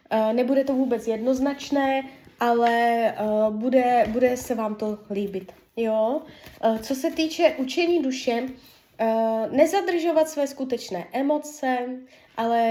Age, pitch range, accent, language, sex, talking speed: 20-39, 225-275 Hz, native, Czech, female, 105 wpm